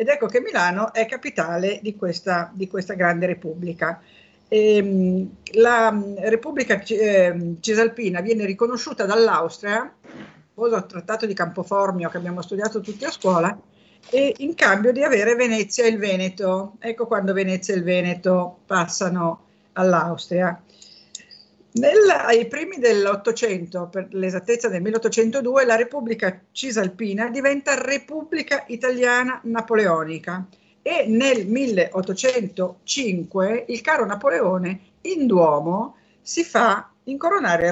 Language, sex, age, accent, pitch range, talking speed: Italian, female, 50-69, native, 180-235 Hz, 115 wpm